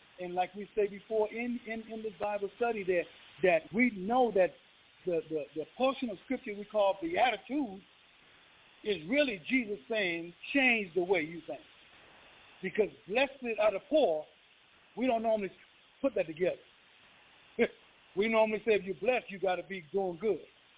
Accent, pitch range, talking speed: American, 185-255 Hz, 170 wpm